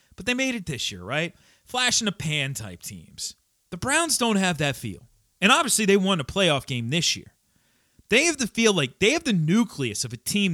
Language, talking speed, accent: English, 230 wpm, American